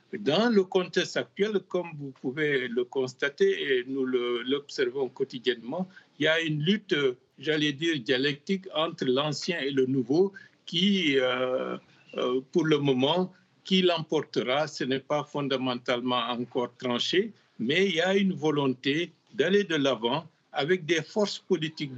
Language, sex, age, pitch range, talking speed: French, male, 60-79, 135-190 Hz, 140 wpm